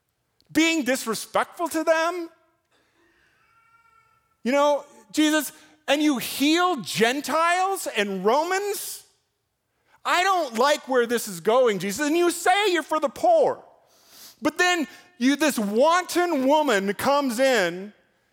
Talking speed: 120 wpm